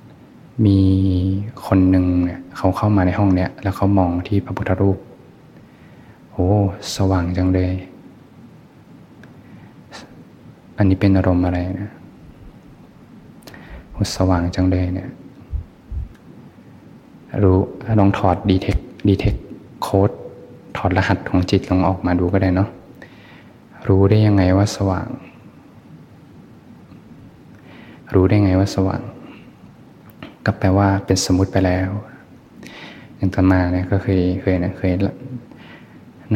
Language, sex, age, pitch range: Thai, male, 20-39, 95-100 Hz